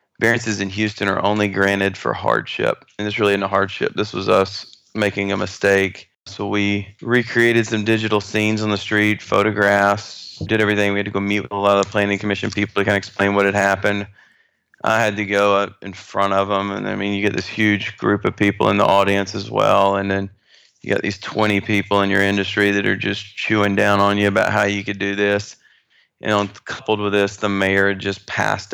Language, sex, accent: English, male, American